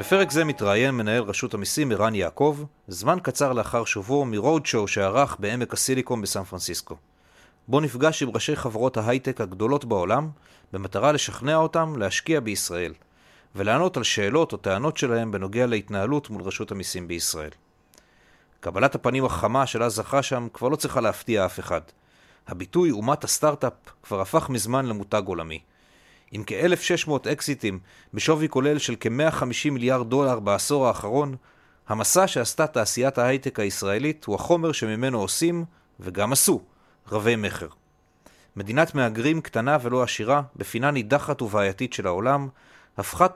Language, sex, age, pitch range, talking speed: Hebrew, male, 40-59, 105-145 Hz, 135 wpm